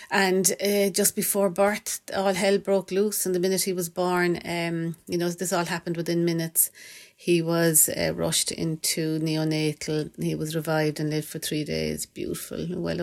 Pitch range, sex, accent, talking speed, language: 150-170 Hz, female, Irish, 180 wpm, English